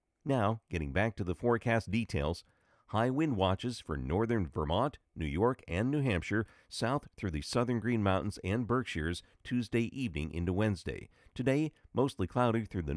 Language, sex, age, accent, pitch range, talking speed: English, male, 50-69, American, 85-115 Hz, 160 wpm